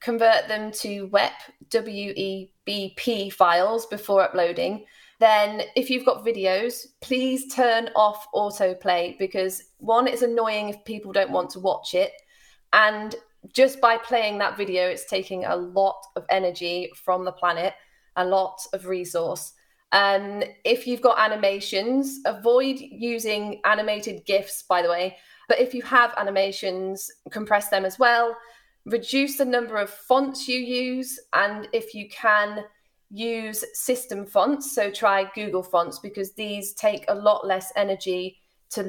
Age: 20-39